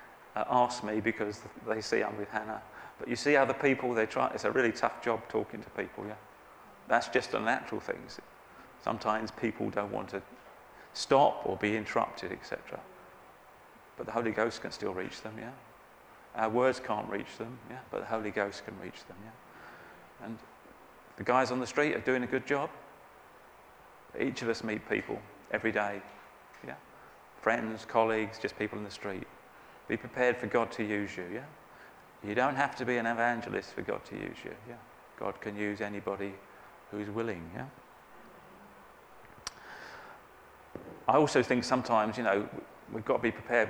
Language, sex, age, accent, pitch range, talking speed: English, male, 30-49, British, 105-120 Hz, 175 wpm